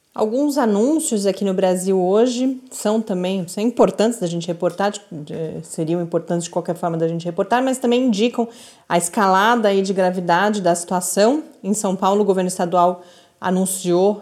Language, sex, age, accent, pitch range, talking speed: Portuguese, female, 30-49, Brazilian, 180-235 Hz, 150 wpm